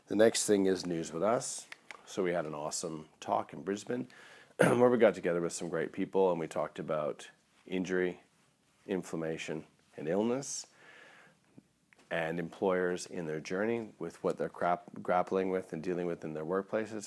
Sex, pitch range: male, 80-95 Hz